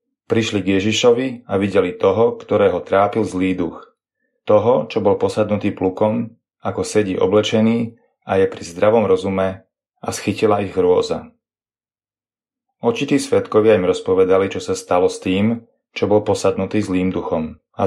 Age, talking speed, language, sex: 30-49, 140 wpm, Slovak, male